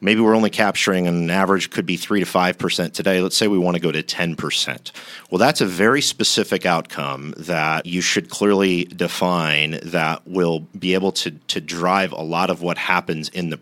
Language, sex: English, male